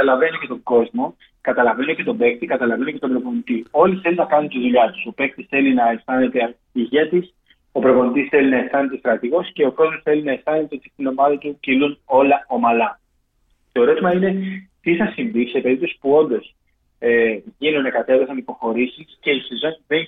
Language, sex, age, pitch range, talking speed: Greek, male, 30-49, 125-150 Hz, 185 wpm